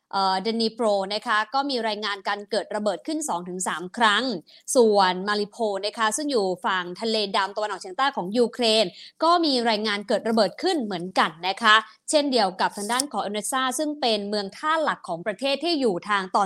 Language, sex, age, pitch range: English, female, 20-39, 200-255 Hz